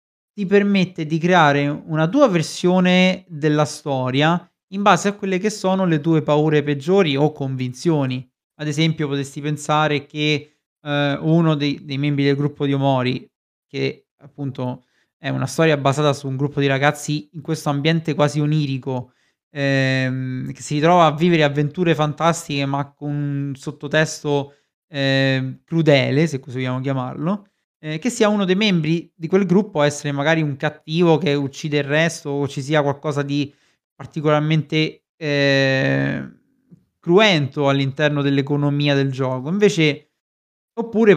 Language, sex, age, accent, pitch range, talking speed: Italian, male, 30-49, native, 140-170 Hz, 145 wpm